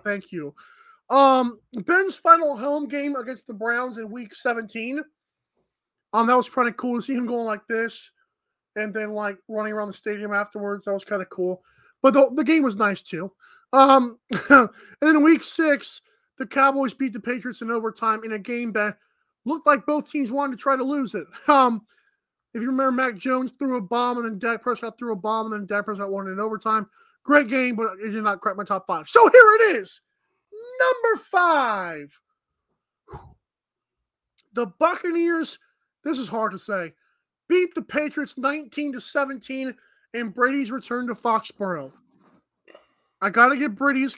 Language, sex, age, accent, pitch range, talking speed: English, male, 20-39, American, 220-290 Hz, 180 wpm